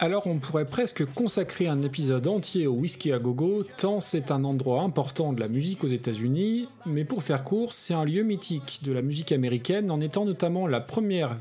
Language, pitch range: French, 135-190 Hz